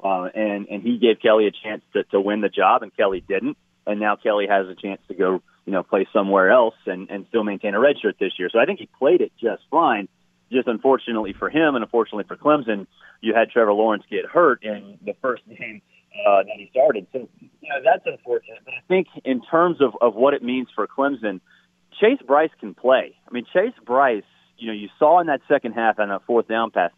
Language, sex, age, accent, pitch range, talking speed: English, male, 30-49, American, 100-140 Hz, 235 wpm